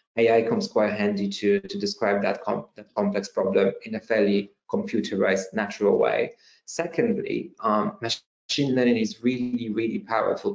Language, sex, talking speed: English, male, 140 wpm